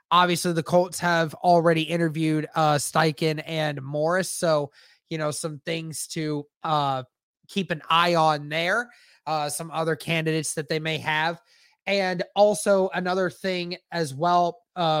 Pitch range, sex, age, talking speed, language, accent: 155-185 Hz, male, 20-39, 150 wpm, English, American